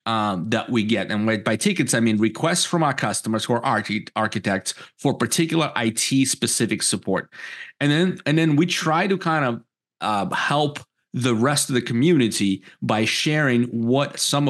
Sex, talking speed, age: male, 170 wpm, 30-49